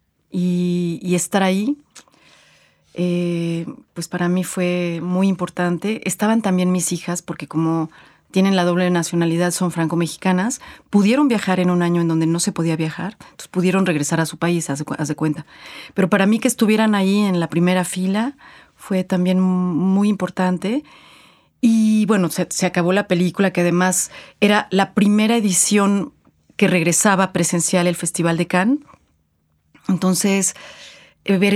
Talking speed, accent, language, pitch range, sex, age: 150 wpm, Mexican, Spanish, 180-210 Hz, female, 40-59